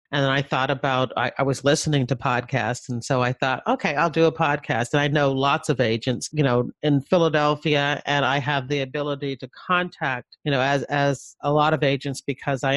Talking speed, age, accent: 220 wpm, 40-59, American